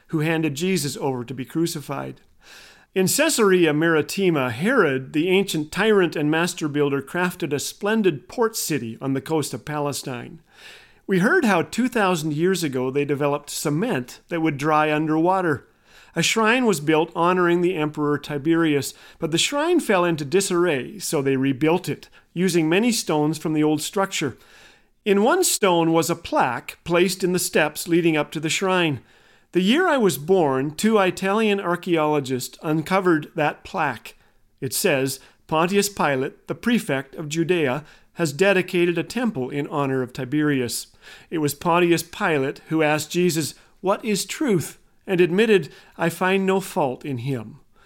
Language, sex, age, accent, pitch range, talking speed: English, male, 40-59, American, 145-185 Hz, 155 wpm